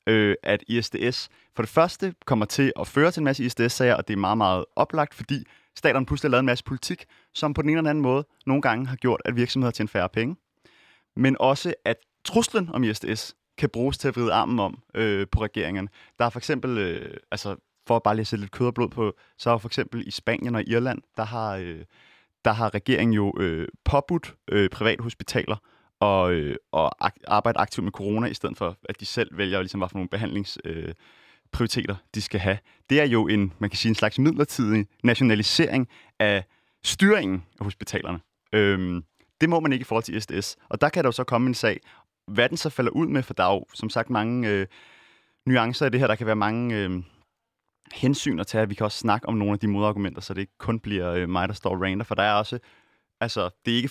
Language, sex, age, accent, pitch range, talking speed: Danish, male, 30-49, native, 100-130 Hz, 225 wpm